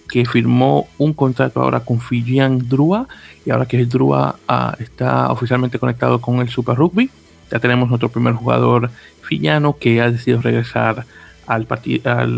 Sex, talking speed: male, 165 wpm